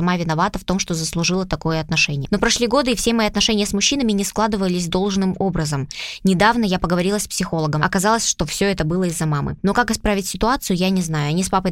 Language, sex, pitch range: Russian, female, 170-210 Hz